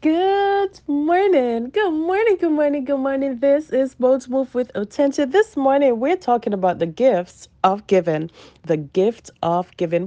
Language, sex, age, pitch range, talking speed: English, female, 30-49, 175-255 Hz, 160 wpm